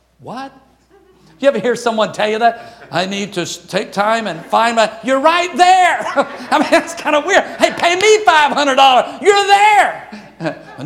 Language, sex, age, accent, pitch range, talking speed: English, male, 50-69, American, 185-250 Hz, 175 wpm